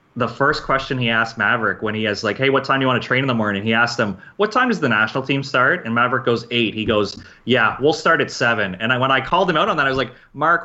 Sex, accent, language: male, American, English